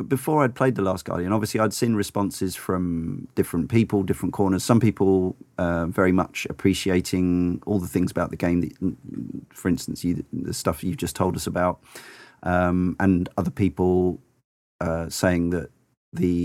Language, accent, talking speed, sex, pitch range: English, British, 170 wpm, male, 90-105 Hz